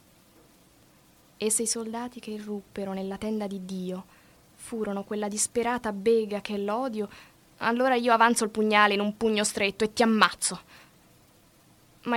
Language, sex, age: Italian, female, 20-39